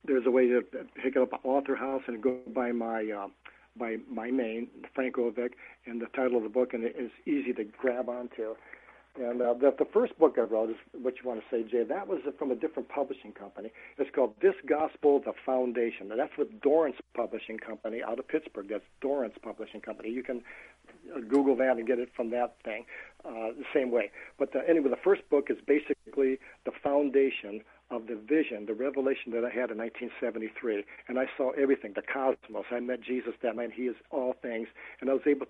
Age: 60-79